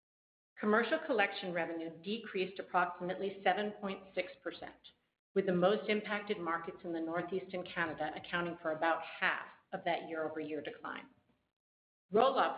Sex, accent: female, American